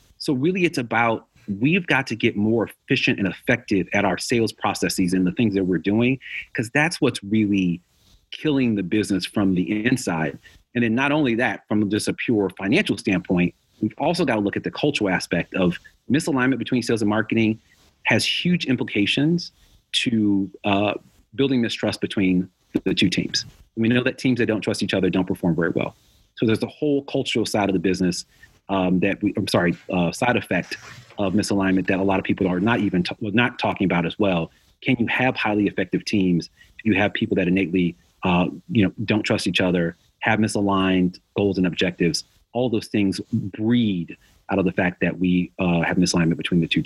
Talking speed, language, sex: 200 wpm, English, male